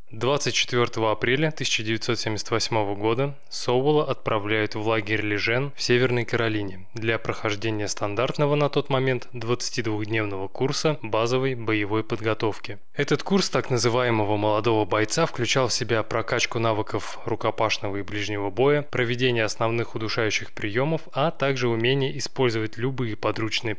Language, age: Russian, 20-39